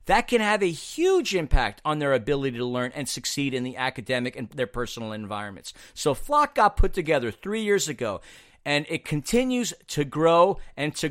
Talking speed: 190 wpm